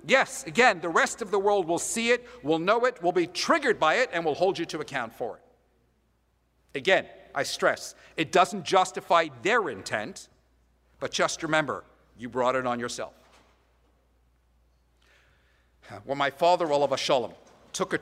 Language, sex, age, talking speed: English, male, 50-69, 165 wpm